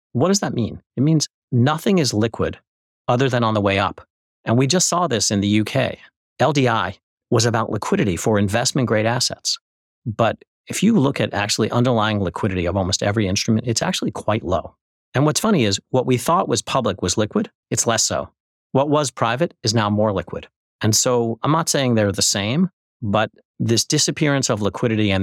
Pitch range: 100-125 Hz